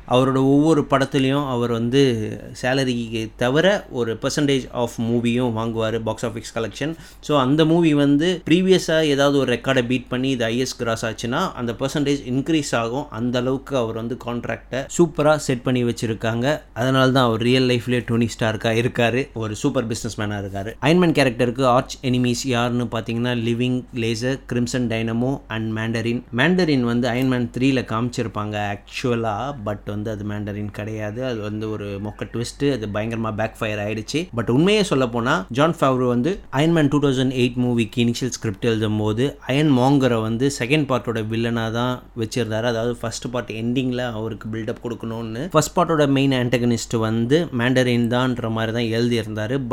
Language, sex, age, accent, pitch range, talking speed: Tamil, male, 20-39, native, 115-135 Hz, 90 wpm